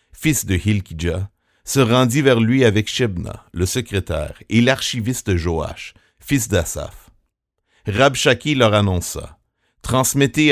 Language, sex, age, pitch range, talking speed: French, male, 60-79, 95-130 Hz, 120 wpm